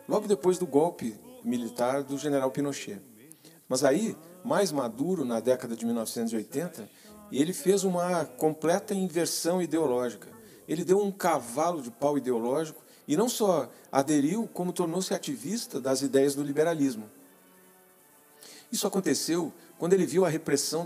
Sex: male